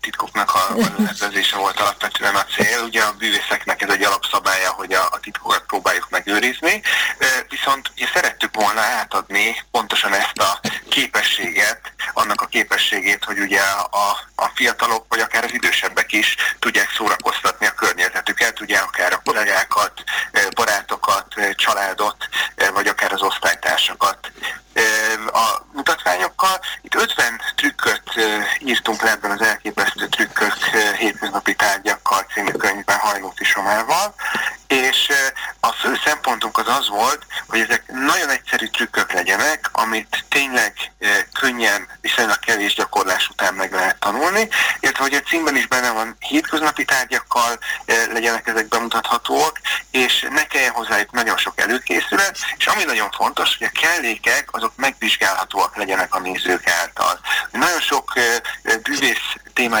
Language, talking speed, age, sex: Hungarian, 130 wpm, 30-49, male